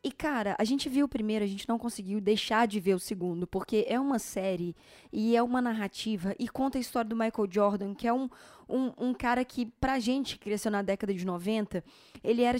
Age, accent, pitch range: 20-39, Brazilian, 215-275 Hz